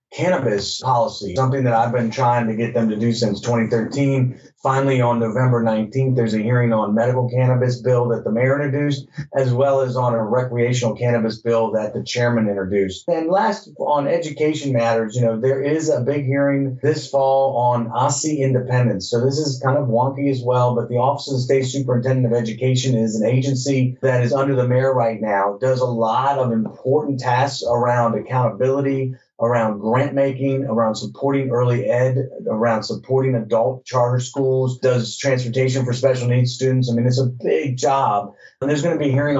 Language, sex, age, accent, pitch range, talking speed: English, male, 30-49, American, 115-135 Hz, 185 wpm